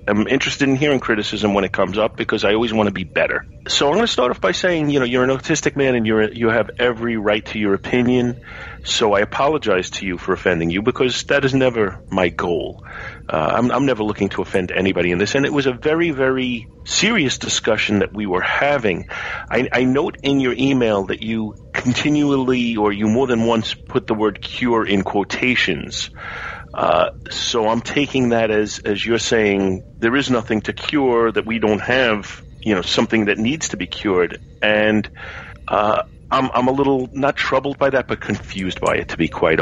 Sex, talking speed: male, 210 wpm